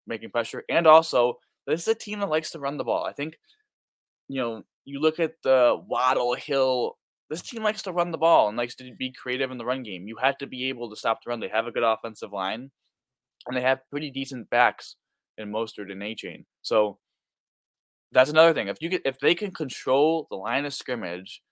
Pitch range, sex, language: 110-140 Hz, male, English